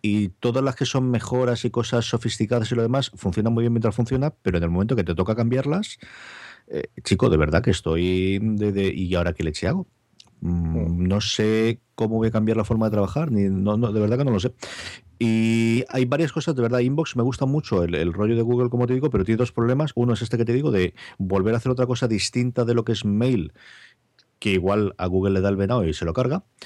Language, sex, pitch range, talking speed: Spanish, male, 95-125 Hz, 245 wpm